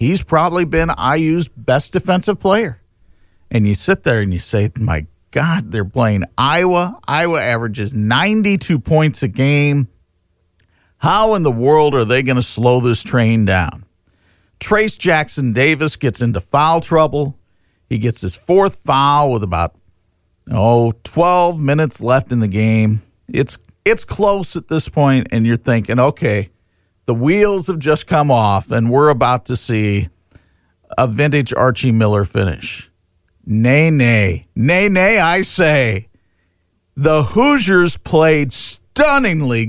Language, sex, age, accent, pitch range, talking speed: English, male, 50-69, American, 100-155 Hz, 140 wpm